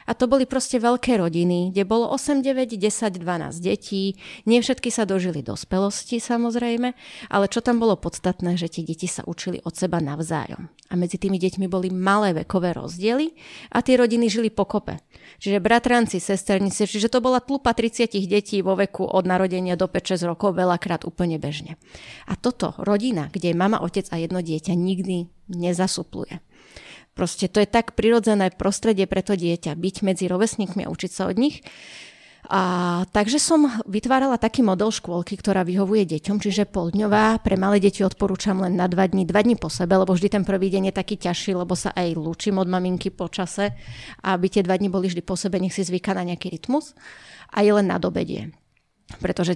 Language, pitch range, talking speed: Slovak, 175-210 Hz, 185 wpm